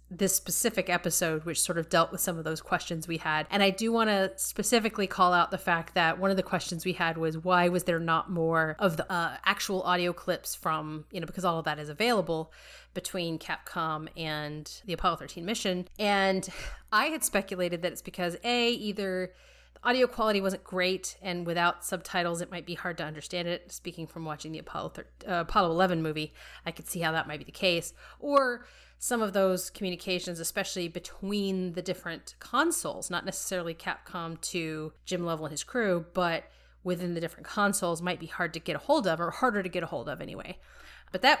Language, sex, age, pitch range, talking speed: English, female, 30-49, 165-195 Hz, 205 wpm